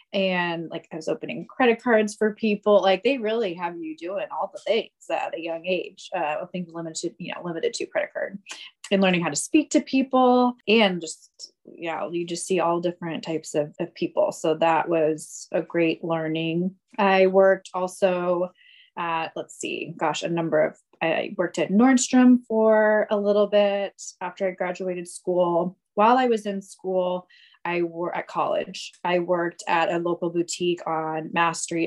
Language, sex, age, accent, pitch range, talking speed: English, female, 20-39, American, 170-215 Hz, 185 wpm